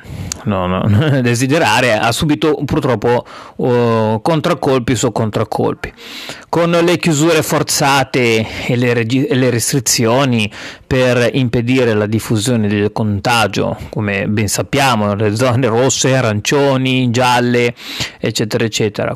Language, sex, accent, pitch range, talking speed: Italian, male, native, 115-145 Hz, 115 wpm